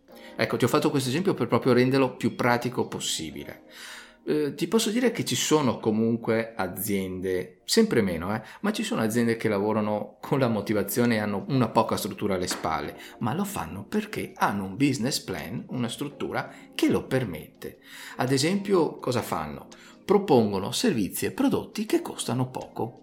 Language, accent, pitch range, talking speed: Italian, native, 100-135 Hz, 165 wpm